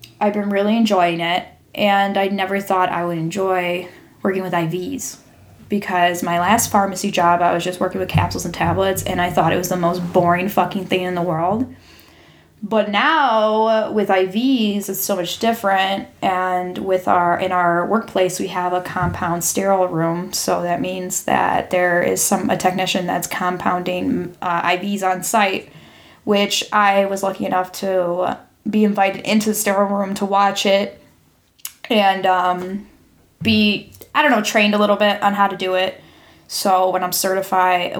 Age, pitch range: 10-29, 180-205 Hz